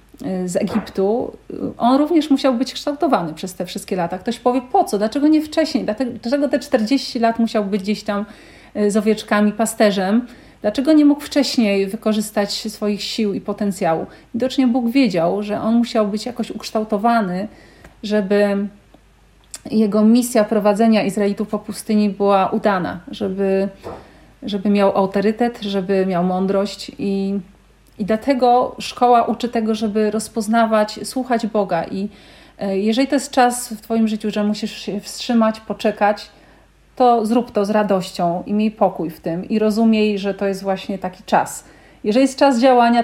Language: Polish